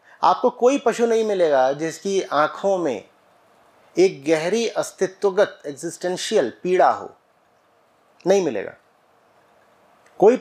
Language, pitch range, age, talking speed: English, 170-225 Hz, 30-49, 100 wpm